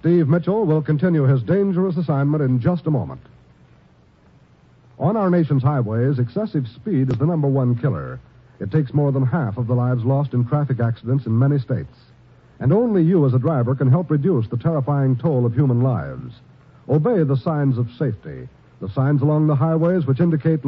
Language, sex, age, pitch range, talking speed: English, male, 60-79, 125-170 Hz, 185 wpm